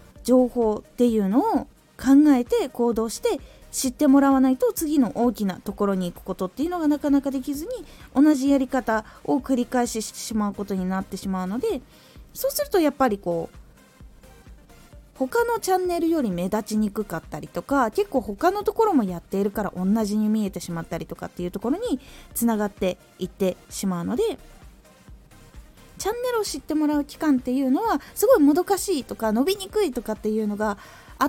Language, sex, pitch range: Japanese, female, 210-325 Hz